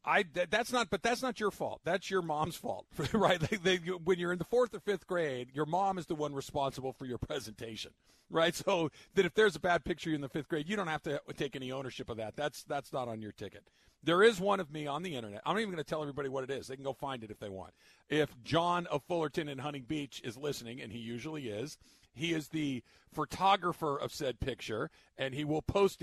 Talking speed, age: 255 wpm, 50-69